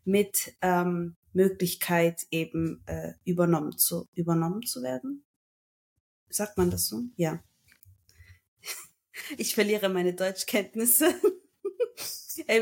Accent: German